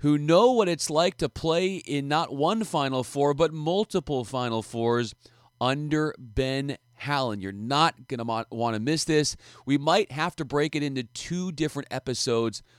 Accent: American